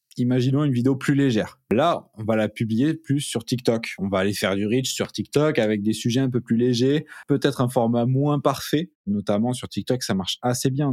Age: 20-39